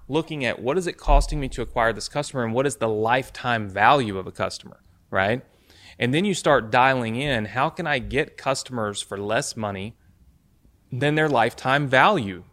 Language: English